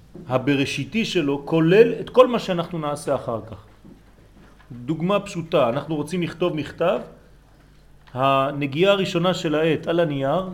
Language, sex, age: French, male, 40-59